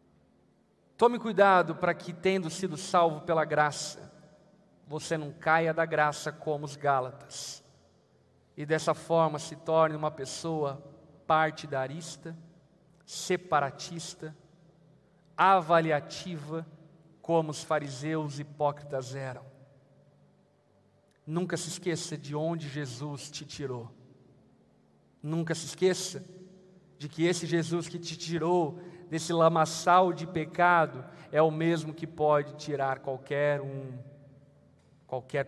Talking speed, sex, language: 110 wpm, male, Portuguese